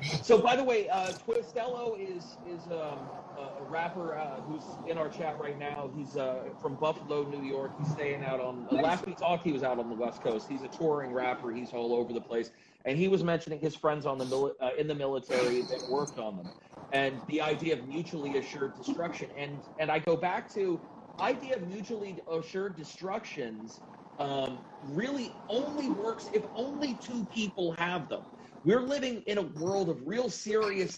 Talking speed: 200 wpm